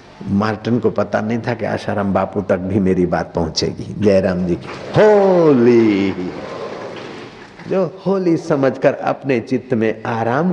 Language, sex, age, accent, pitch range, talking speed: Hindi, male, 50-69, native, 105-140 Hz, 135 wpm